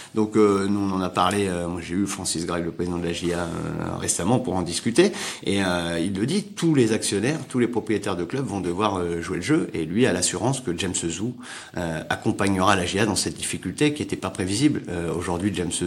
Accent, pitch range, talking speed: French, 90-115 Hz, 235 wpm